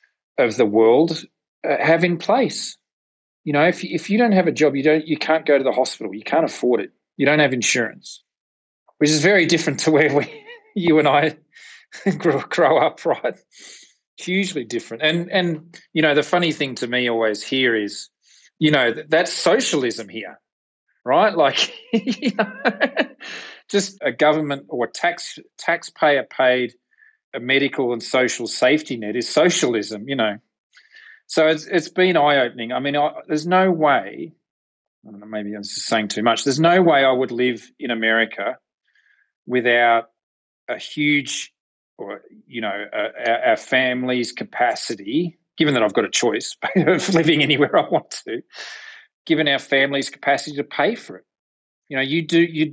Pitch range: 125-170 Hz